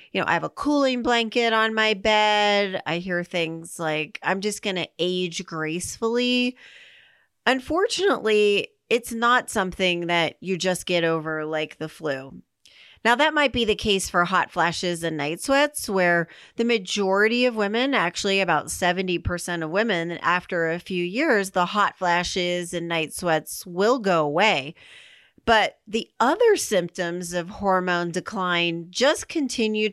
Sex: female